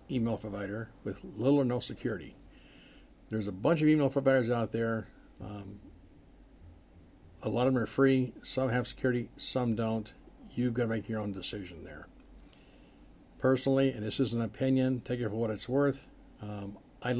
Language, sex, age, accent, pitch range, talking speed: English, male, 50-69, American, 105-130 Hz, 170 wpm